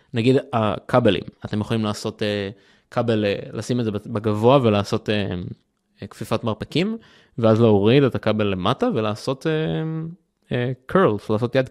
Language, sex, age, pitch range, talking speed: Hebrew, male, 20-39, 110-140 Hz, 140 wpm